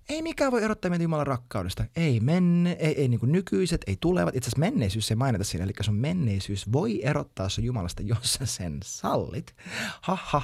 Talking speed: 200 wpm